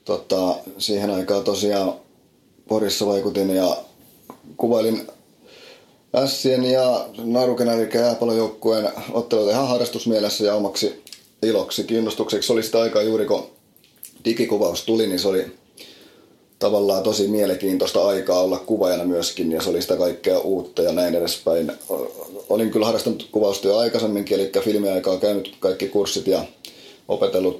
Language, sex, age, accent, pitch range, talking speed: Finnish, male, 30-49, native, 100-115 Hz, 130 wpm